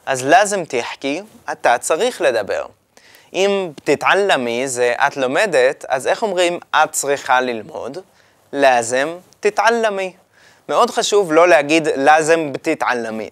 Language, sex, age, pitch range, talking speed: Hebrew, male, 20-39, 130-195 Hz, 115 wpm